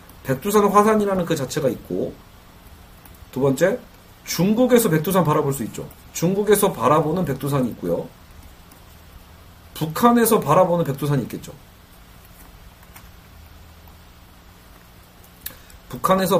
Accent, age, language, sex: native, 40-59, Korean, male